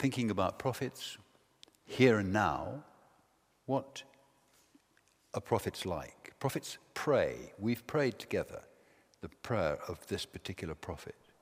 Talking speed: 110 wpm